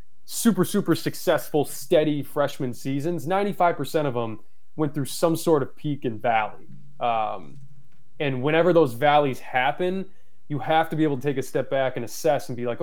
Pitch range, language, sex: 125-155 Hz, English, male